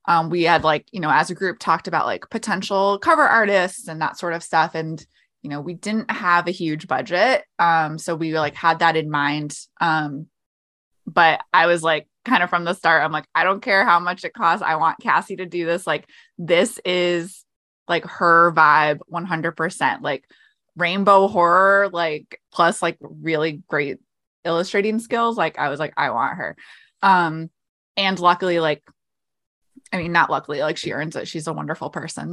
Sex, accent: female, American